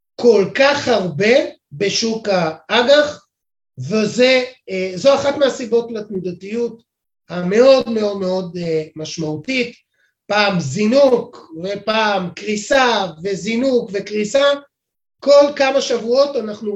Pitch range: 195-270 Hz